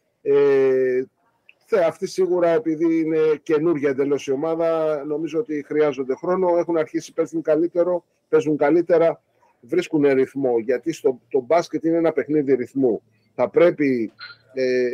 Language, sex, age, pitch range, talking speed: Greek, male, 30-49, 135-170 Hz, 135 wpm